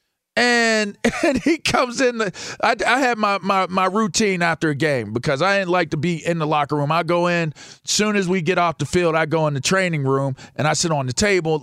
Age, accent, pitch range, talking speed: 40-59, American, 135-190 Hz, 255 wpm